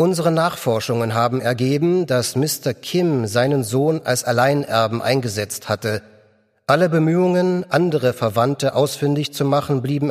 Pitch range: 120-150 Hz